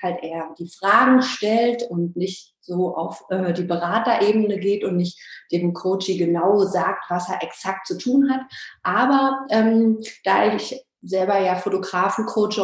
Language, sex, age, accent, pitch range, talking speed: German, female, 30-49, German, 175-220 Hz, 155 wpm